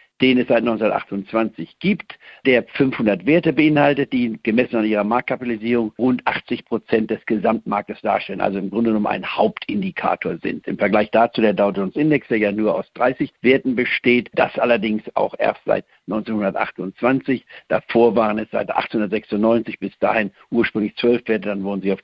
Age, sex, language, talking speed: 60-79, male, German, 165 wpm